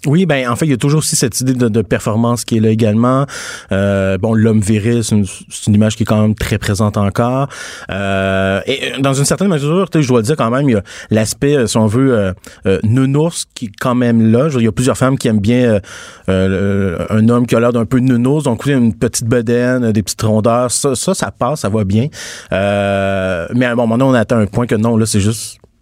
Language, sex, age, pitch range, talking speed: French, male, 30-49, 110-130 Hz, 255 wpm